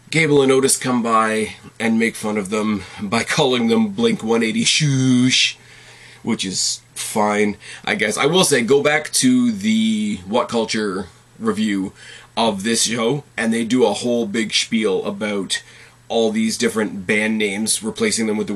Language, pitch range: English, 110-160 Hz